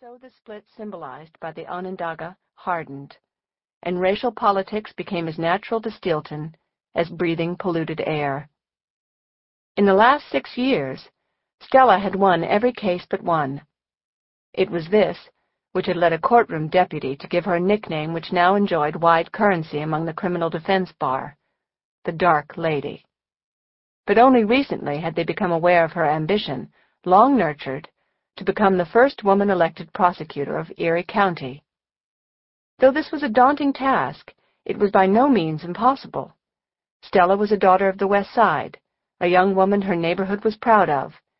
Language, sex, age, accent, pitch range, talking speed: English, female, 50-69, American, 165-210 Hz, 155 wpm